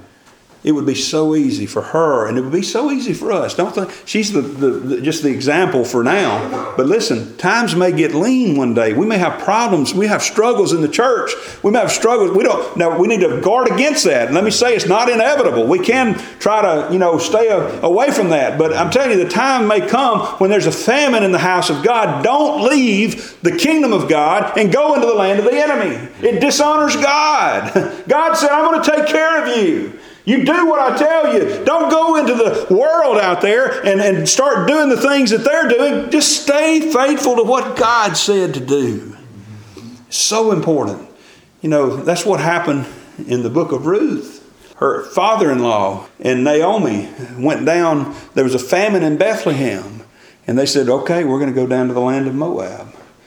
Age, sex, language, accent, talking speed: 40-59, male, English, American, 210 wpm